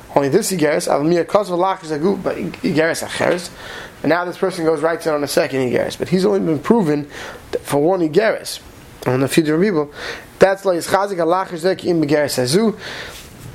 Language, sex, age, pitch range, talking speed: English, male, 20-39, 155-200 Hz, 105 wpm